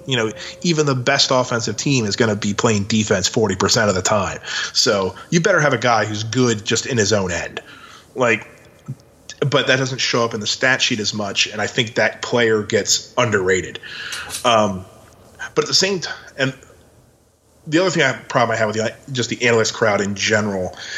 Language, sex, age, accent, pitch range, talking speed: English, male, 30-49, American, 110-135 Hz, 210 wpm